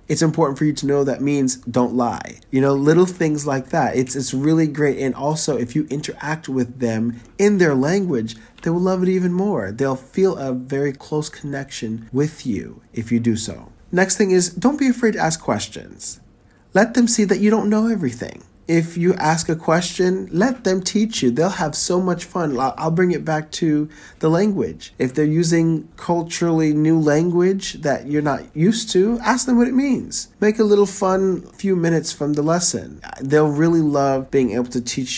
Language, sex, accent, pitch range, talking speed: English, male, American, 115-170 Hz, 200 wpm